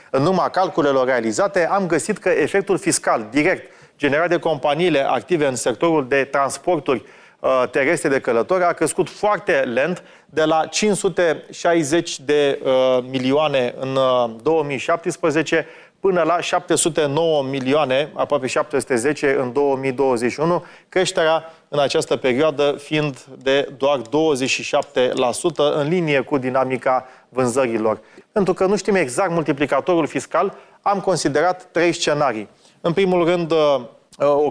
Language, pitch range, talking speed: Romanian, 140-175 Hz, 120 wpm